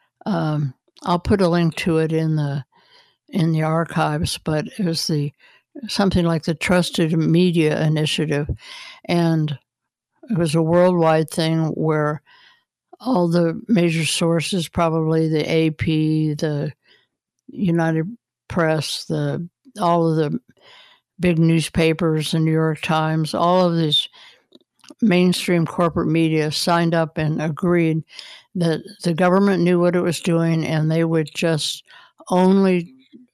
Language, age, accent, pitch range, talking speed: English, 60-79, American, 160-180 Hz, 125 wpm